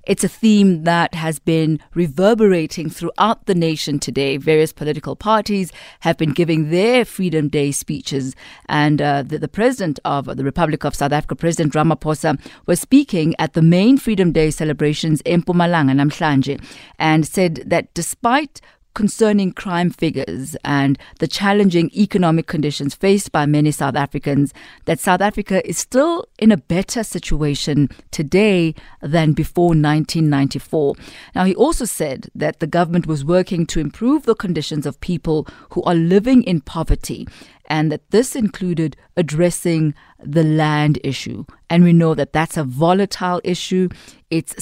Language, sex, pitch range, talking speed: English, female, 150-195 Hz, 150 wpm